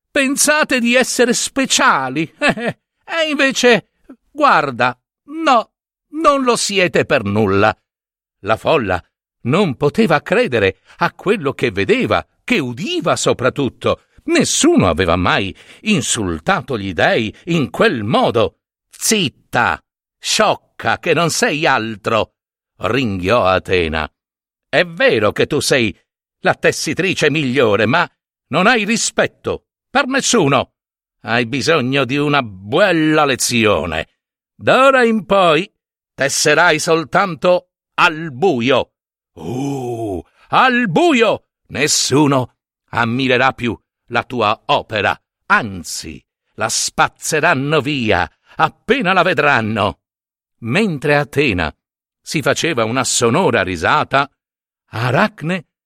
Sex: male